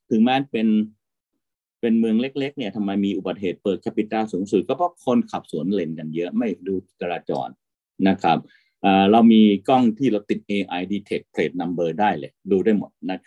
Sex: male